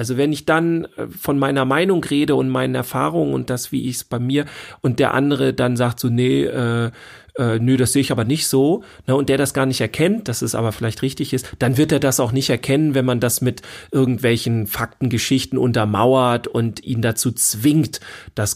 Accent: German